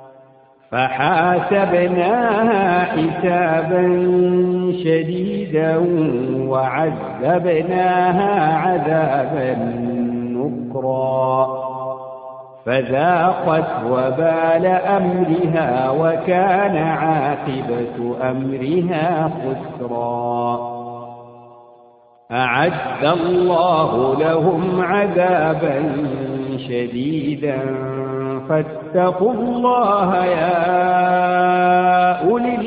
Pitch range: 130-180 Hz